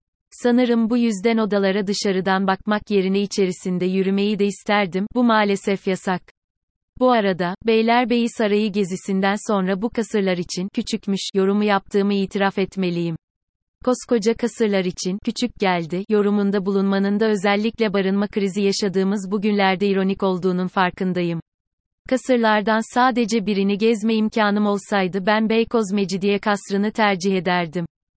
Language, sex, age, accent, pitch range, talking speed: Turkish, female, 30-49, native, 190-220 Hz, 120 wpm